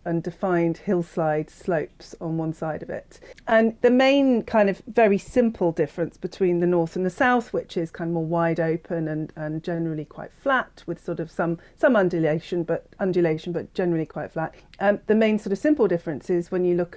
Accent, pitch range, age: British, 165-195 Hz, 40-59